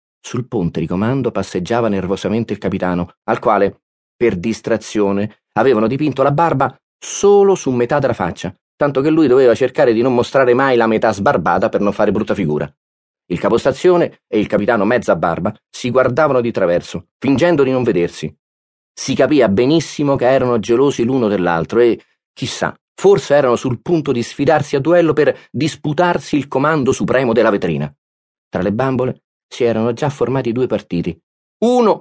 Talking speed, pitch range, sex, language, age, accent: 165 wpm, 105-150 Hz, male, Italian, 30-49, native